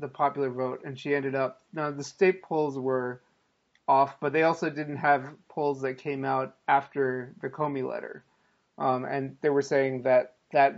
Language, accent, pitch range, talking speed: English, American, 135-155 Hz, 185 wpm